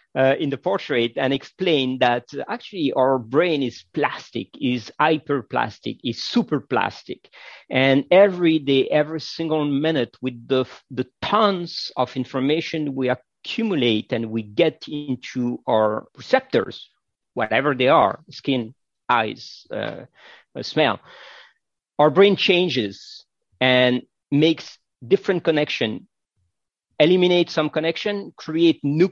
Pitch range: 125-170 Hz